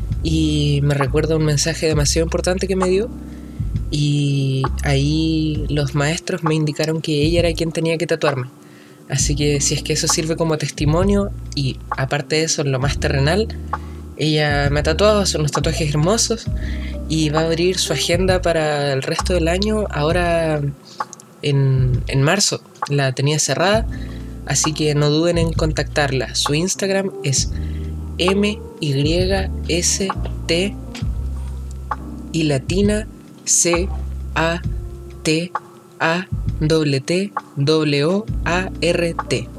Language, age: Spanish, 20-39